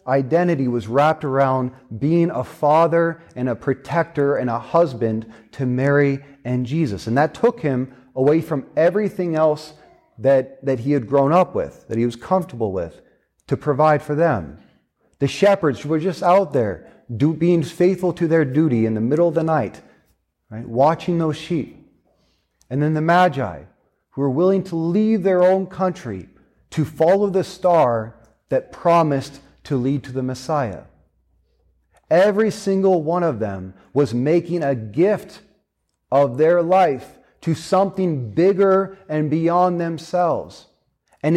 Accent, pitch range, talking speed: American, 130-170 Hz, 150 wpm